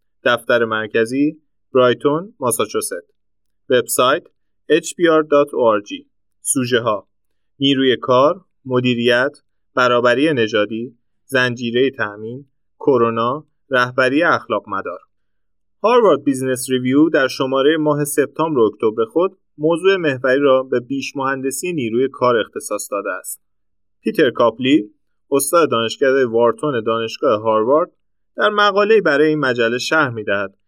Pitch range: 115-160 Hz